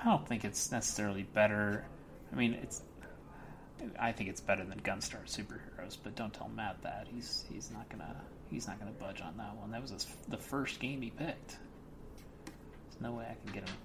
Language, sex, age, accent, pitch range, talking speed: English, male, 30-49, American, 105-145 Hz, 205 wpm